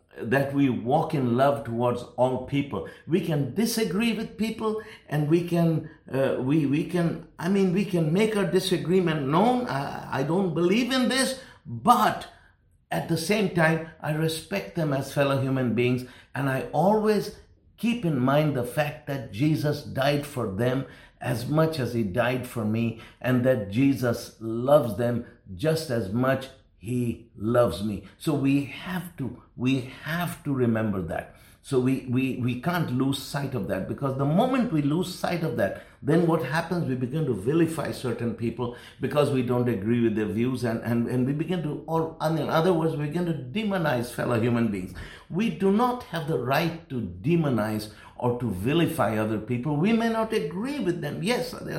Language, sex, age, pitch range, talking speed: English, male, 60-79, 120-170 Hz, 180 wpm